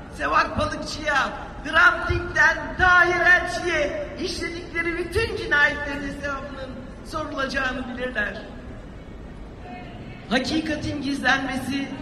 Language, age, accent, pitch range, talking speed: Turkish, 60-79, native, 230-285 Hz, 65 wpm